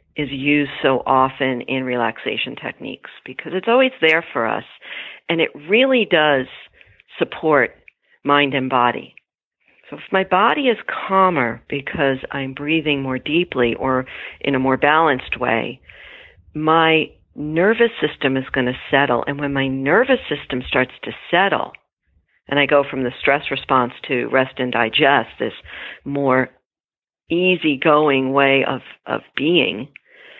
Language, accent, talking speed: English, American, 140 wpm